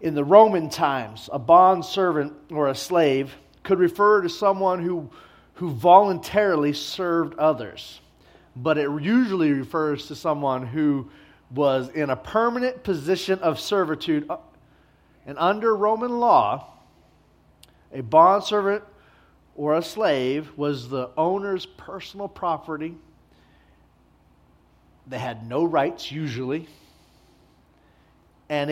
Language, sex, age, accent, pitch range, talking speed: English, male, 40-59, American, 135-185 Hz, 110 wpm